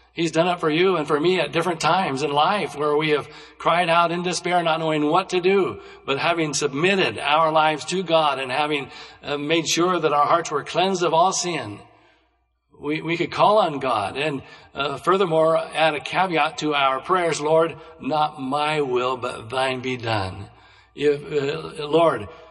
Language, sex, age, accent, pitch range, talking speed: English, male, 60-79, American, 140-170 Hz, 190 wpm